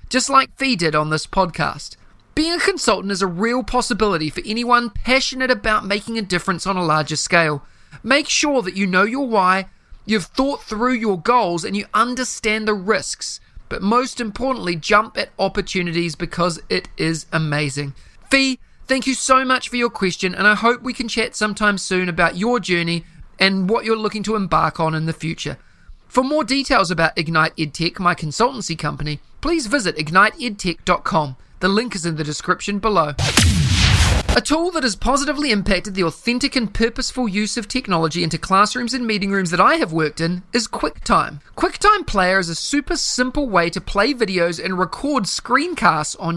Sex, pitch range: male, 170-245 Hz